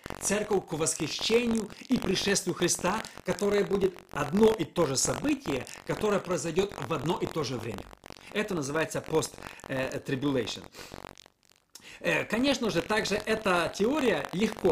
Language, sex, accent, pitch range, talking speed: Russian, male, native, 150-210 Hz, 120 wpm